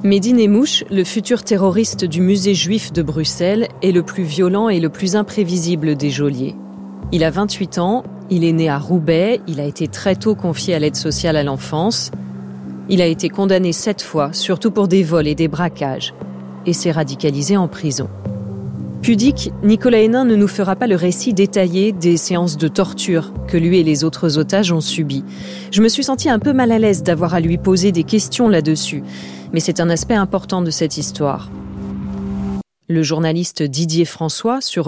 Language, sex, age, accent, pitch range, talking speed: French, female, 30-49, French, 160-195 Hz, 190 wpm